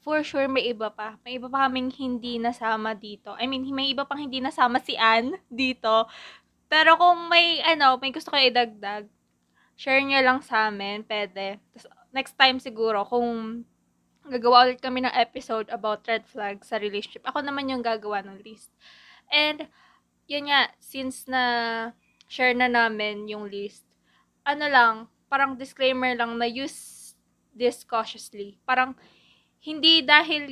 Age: 20-39